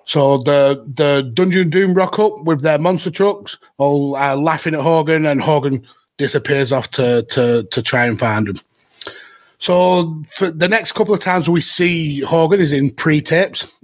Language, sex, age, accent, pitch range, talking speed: English, male, 30-49, British, 130-155 Hz, 175 wpm